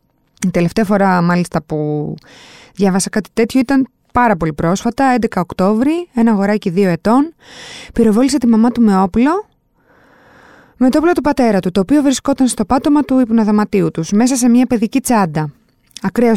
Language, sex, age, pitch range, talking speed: Greek, female, 20-39, 185-250 Hz, 160 wpm